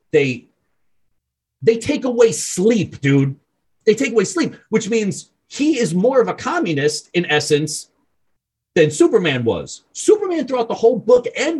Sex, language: male, English